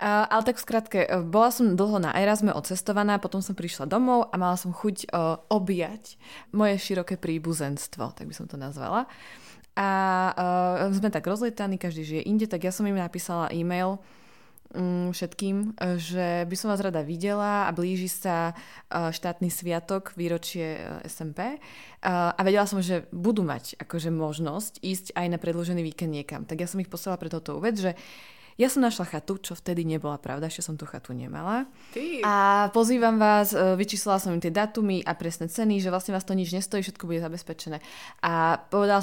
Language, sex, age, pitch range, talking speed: Slovak, female, 20-39, 170-205 Hz, 180 wpm